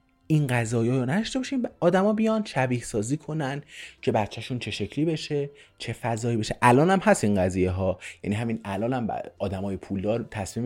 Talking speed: 175 wpm